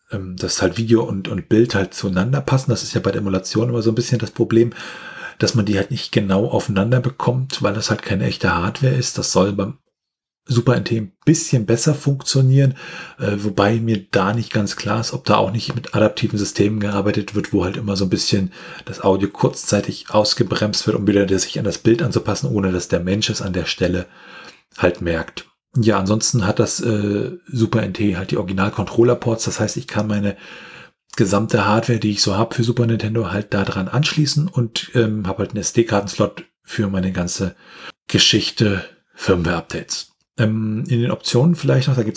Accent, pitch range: German, 100-125 Hz